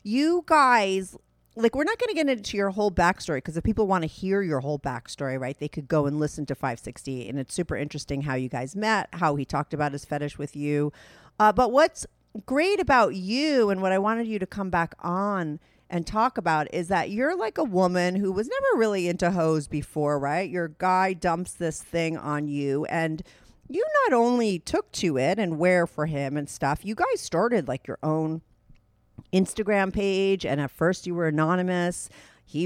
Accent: American